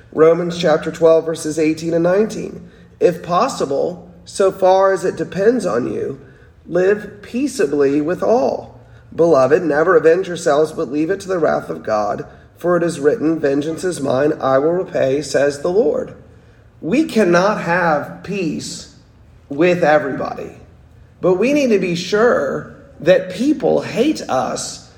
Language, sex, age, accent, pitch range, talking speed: English, male, 40-59, American, 160-210 Hz, 145 wpm